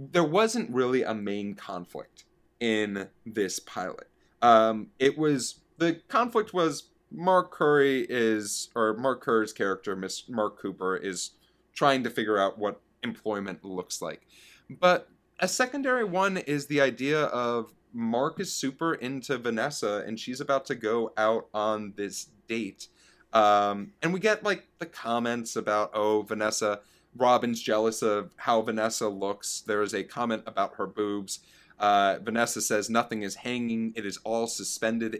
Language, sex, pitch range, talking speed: English, male, 110-165 Hz, 150 wpm